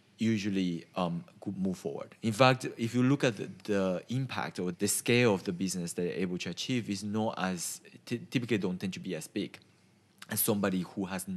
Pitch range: 90-115 Hz